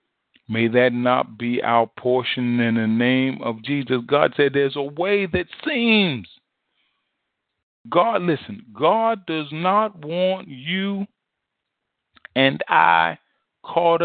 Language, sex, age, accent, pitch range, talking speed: English, male, 40-59, American, 110-155 Hz, 120 wpm